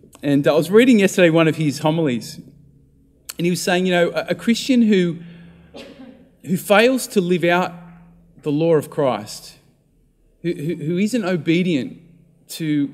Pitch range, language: 135-175 Hz, English